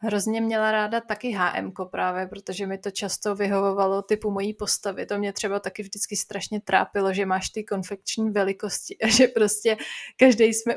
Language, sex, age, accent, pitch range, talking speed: Czech, female, 20-39, native, 205-240 Hz, 175 wpm